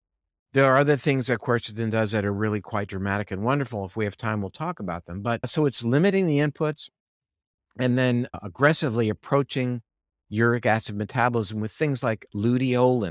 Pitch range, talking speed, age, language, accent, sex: 105-130 Hz, 180 wpm, 50-69, English, American, male